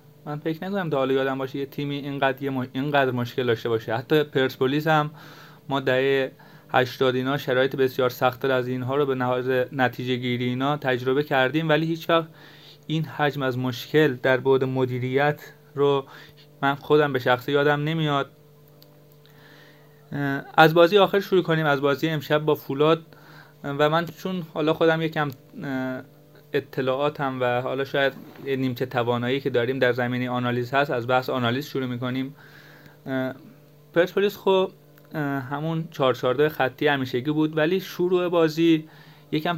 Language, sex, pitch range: Persian, male, 130-155 Hz